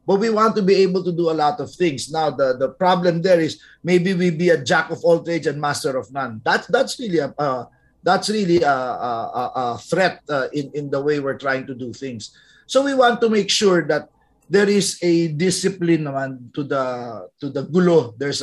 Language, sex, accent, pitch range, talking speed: English, male, Filipino, 150-210 Hz, 225 wpm